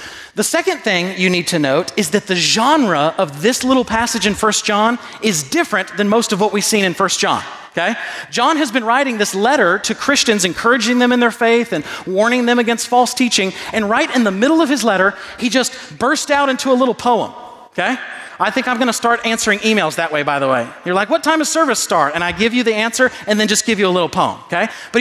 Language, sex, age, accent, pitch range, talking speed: English, male, 40-59, American, 185-255 Hz, 245 wpm